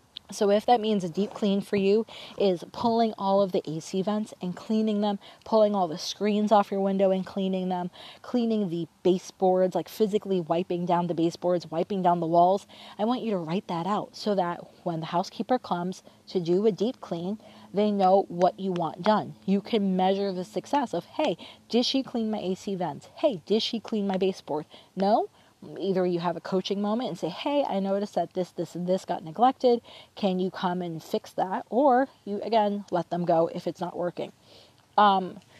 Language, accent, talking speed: English, American, 205 wpm